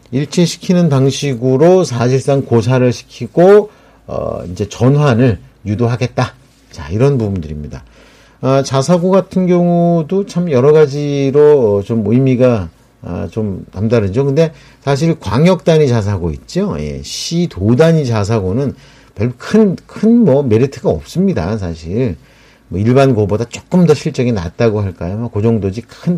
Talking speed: 110 wpm